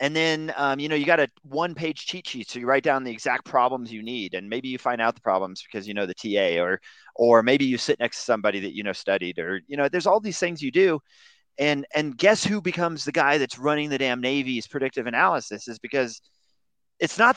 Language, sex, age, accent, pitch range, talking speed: English, male, 30-49, American, 120-180 Hz, 245 wpm